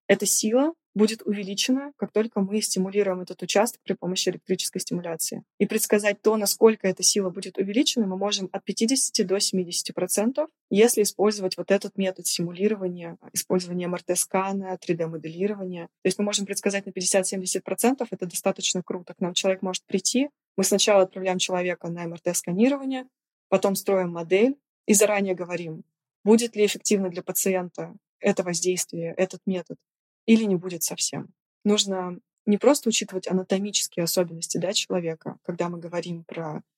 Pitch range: 175-205 Hz